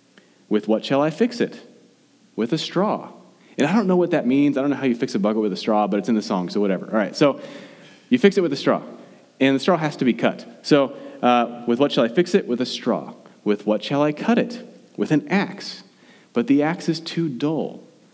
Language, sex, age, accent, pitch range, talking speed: English, male, 30-49, American, 115-170 Hz, 250 wpm